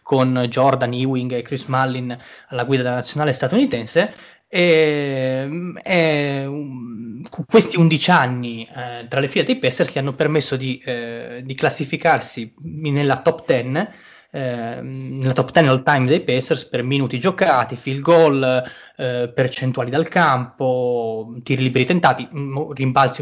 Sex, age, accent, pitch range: male, 20-39, native, 125-155 Hz